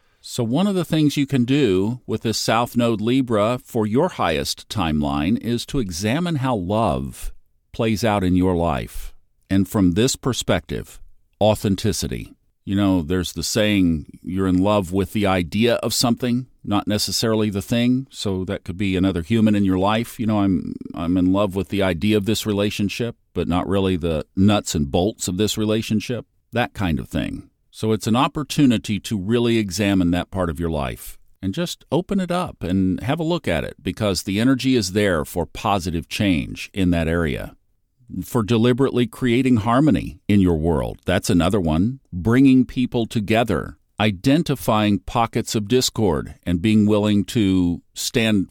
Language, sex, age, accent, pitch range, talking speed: English, male, 50-69, American, 90-120 Hz, 175 wpm